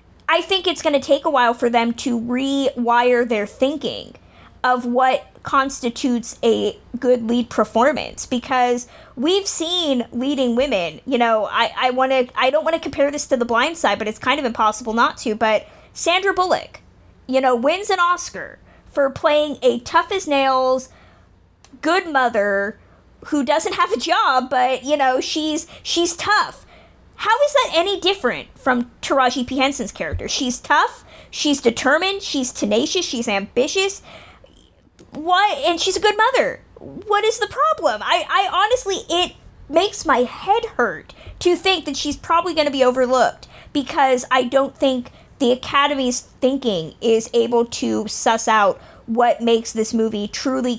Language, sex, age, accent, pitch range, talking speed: English, female, 20-39, American, 240-315 Hz, 160 wpm